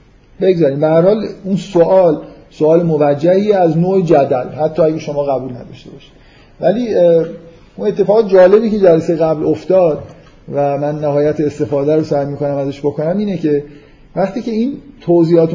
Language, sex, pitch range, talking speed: Persian, male, 145-175 Hz, 145 wpm